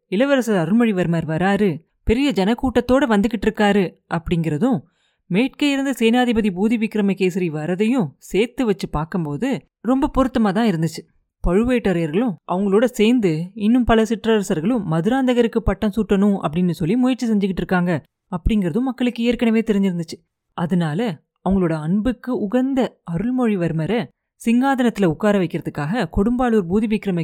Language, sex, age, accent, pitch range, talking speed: Tamil, female, 30-49, native, 180-240 Hz, 105 wpm